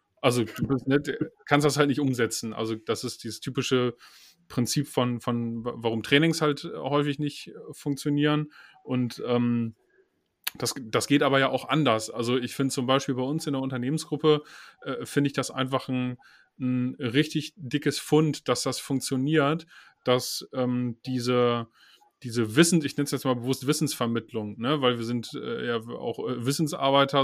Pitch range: 120-145 Hz